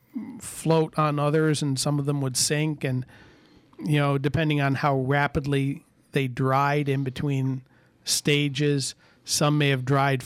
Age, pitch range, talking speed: 40-59, 135-155 Hz, 145 wpm